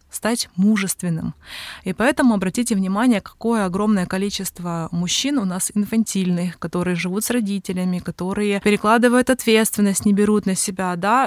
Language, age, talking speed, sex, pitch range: Russian, 20-39, 135 wpm, female, 185-220 Hz